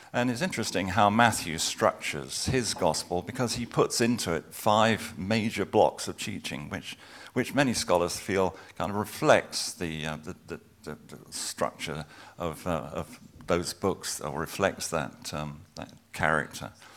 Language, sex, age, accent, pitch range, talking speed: English, male, 50-69, British, 85-110 Hz, 150 wpm